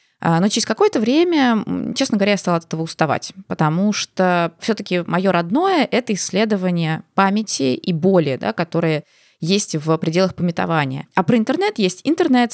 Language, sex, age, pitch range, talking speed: Russian, female, 20-39, 170-220 Hz, 165 wpm